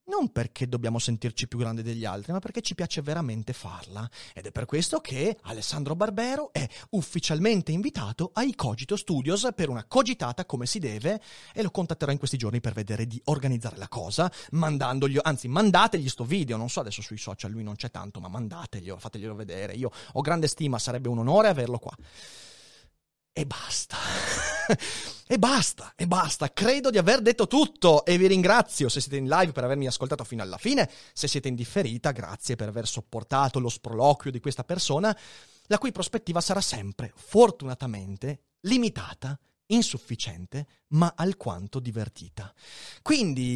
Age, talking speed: 30-49, 165 wpm